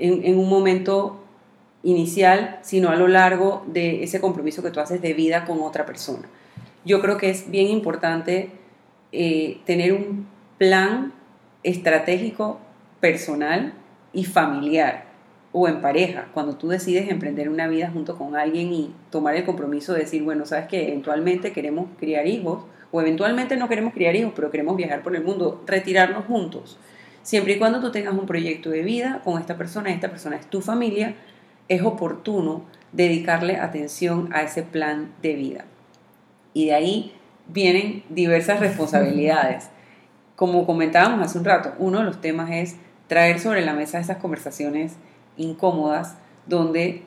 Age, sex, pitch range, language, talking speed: 30-49, female, 165-195 Hz, Spanish, 155 wpm